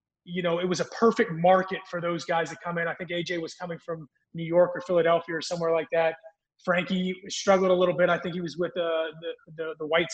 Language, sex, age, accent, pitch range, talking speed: English, male, 30-49, American, 170-205 Hz, 250 wpm